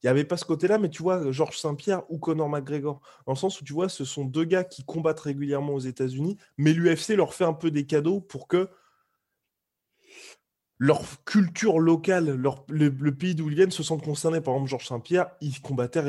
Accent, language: French, French